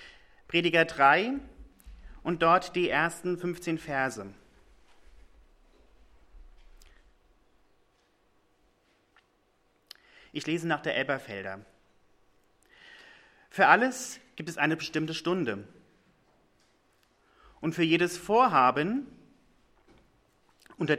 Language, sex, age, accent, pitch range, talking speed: English, male, 40-59, German, 125-185 Hz, 70 wpm